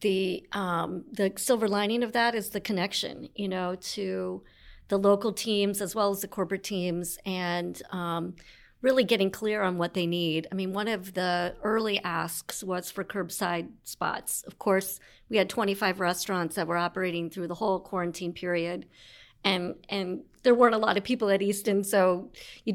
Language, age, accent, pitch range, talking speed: English, 40-59, American, 180-210 Hz, 180 wpm